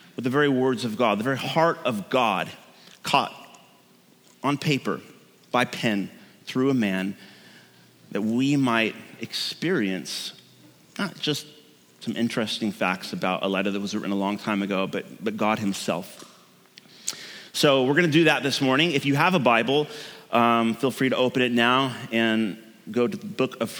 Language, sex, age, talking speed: English, male, 30-49, 170 wpm